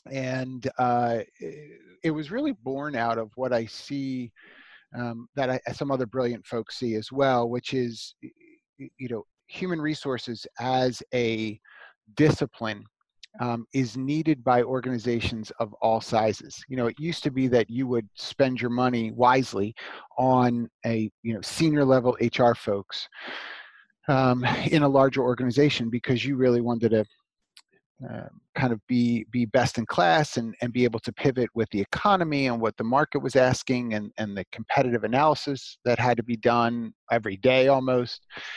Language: English